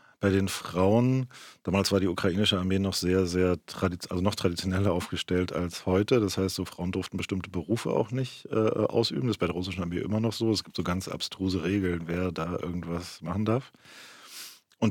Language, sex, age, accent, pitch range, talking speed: German, male, 40-59, German, 90-105 Hz, 200 wpm